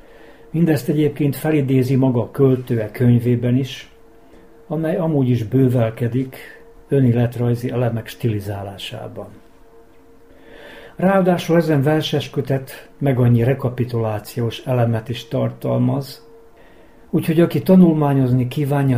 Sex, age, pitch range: male, 60-79, 120-140 Hz